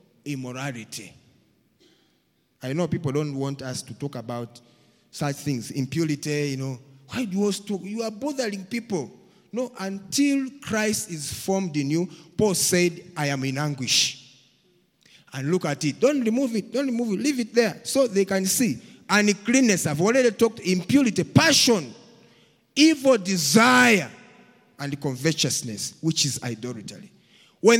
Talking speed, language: 145 wpm, English